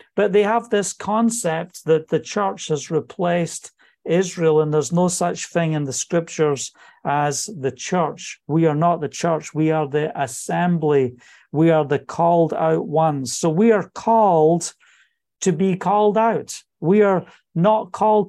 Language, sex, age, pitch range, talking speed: English, male, 50-69, 160-195 Hz, 160 wpm